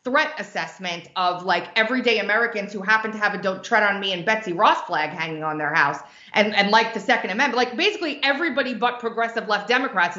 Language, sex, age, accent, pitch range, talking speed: English, female, 30-49, American, 200-265 Hz, 210 wpm